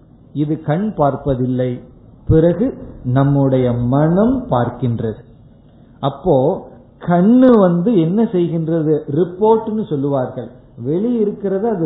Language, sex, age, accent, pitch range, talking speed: Tamil, male, 50-69, native, 130-190 Hz, 75 wpm